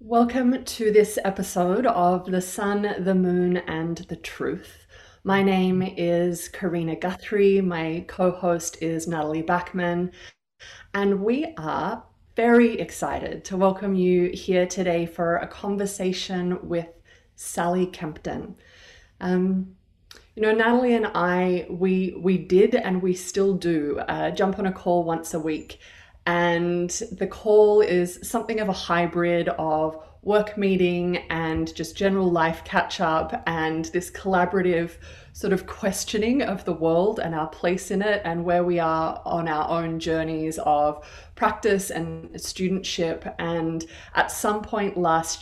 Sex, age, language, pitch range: female, 20-39, English, 165-195 Hz